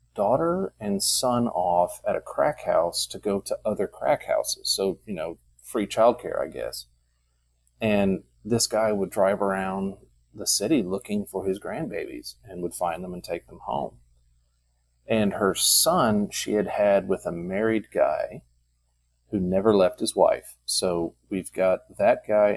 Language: English